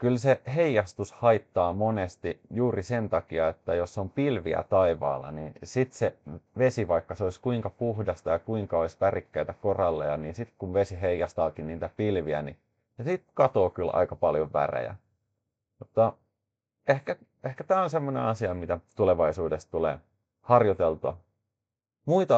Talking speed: 140 wpm